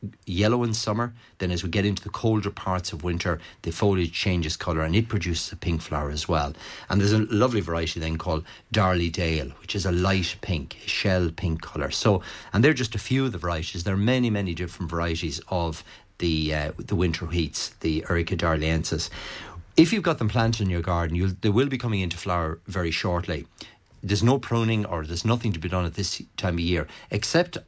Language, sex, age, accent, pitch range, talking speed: English, male, 30-49, Irish, 80-105 Hz, 215 wpm